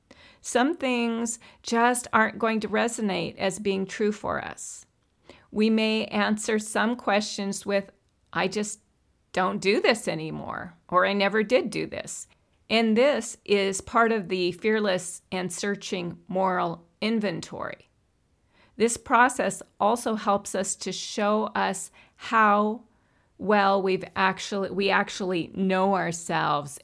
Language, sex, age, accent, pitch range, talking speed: English, female, 40-59, American, 185-220 Hz, 125 wpm